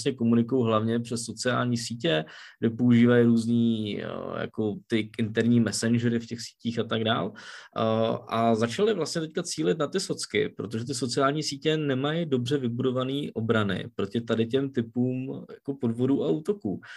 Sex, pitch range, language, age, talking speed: male, 115-140 Hz, Czech, 20-39, 145 wpm